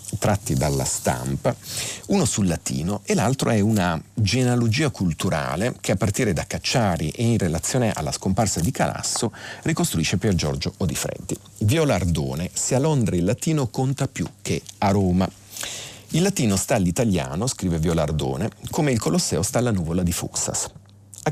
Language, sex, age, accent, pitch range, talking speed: Italian, male, 40-59, native, 85-120 Hz, 150 wpm